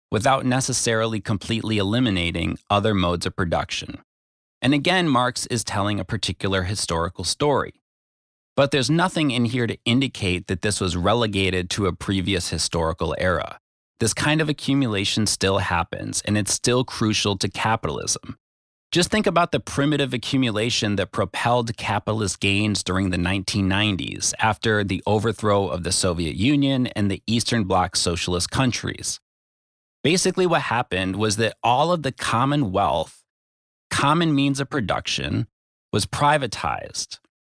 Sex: male